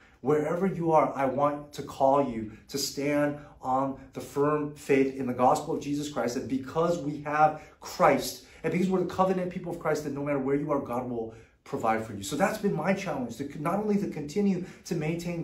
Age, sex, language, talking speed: 30-49, male, English, 220 wpm